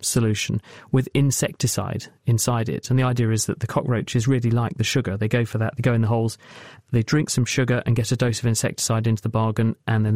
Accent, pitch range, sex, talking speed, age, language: British, 115-145 Hz, male, 235 wpm, 40-59, English